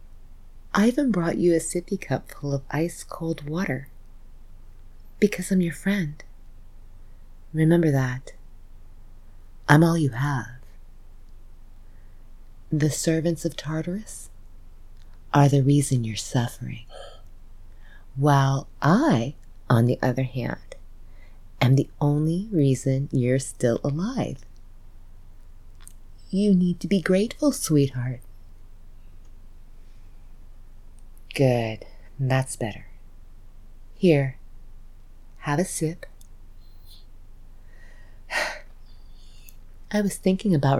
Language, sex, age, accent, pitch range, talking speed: English, female, 30-49, American, 90-150 Hz, 90 wpm